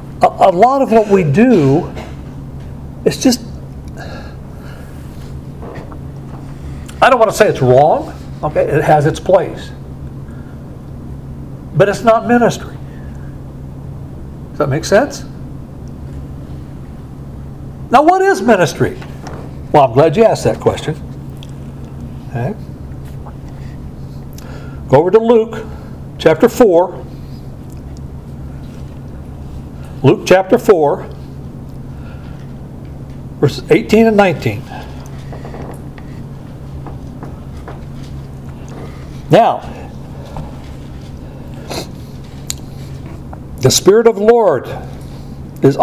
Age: 60-79